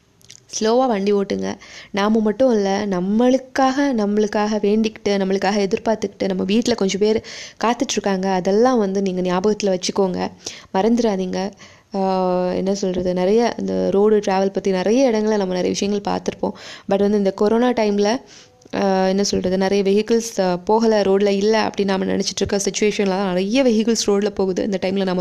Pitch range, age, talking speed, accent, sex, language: 190-215 Hz, 20-39, 140 wpm, native, female, Tamil